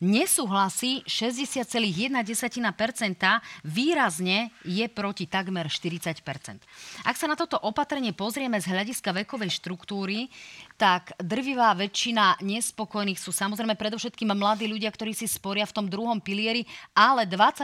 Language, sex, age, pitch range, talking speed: Slovak, female, 30-49, 185-235 Hz, 115 wpm